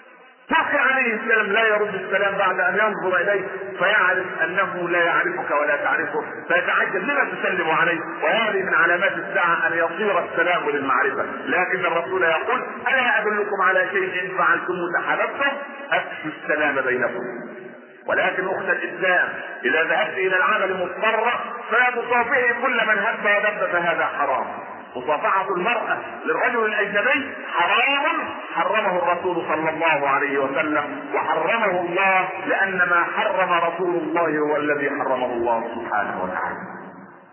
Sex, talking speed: male, 130 wpm